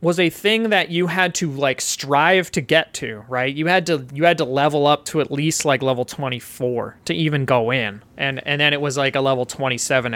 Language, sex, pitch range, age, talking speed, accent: English, male, 130-165 Hz, 30-49, 235 wpm, American